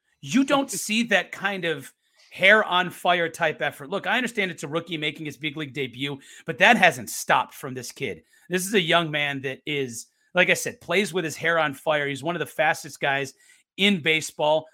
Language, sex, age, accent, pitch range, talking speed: English, male, 30-49, American, 145-180 Hz, 215 wpm